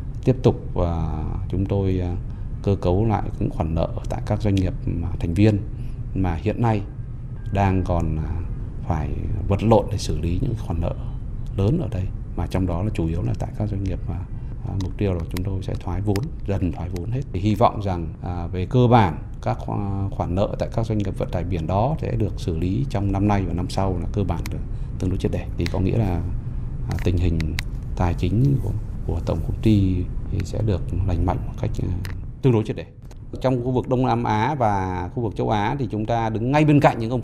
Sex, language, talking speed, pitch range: male, Vietnamese, 220 wpm, 95-125 Hz